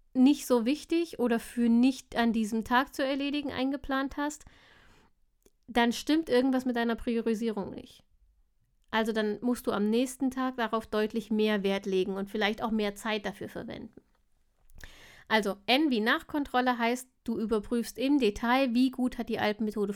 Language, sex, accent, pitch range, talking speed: German, female, German, 210-255 Hz, 160 wpm